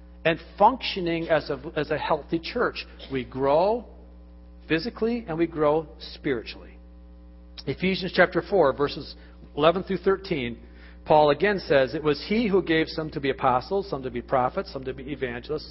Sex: male